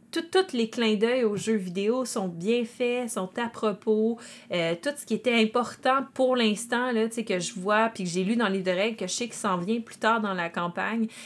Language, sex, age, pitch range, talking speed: French, female, 30-49, 190-235 Hz, 240 wpm